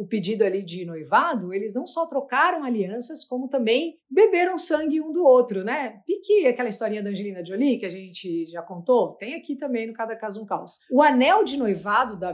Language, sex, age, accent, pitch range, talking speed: Portuguese, female, 50-69, Brazilian, 210-275 Hz, 210 wpm